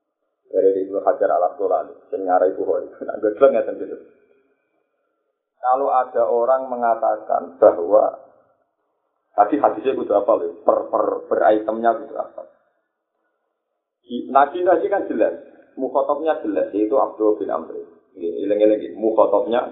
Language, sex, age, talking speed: Indonesian, male, 30-49, 120 wpm